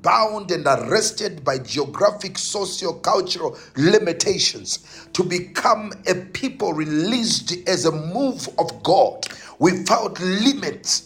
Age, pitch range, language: 50-69, 175-230 Hz, English